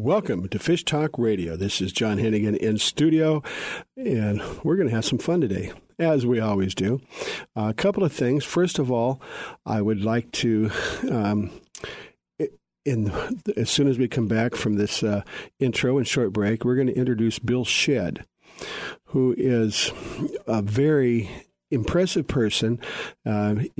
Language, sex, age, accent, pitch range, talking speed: English, male, 50-69, American, 105-130 Hz, 160 wpm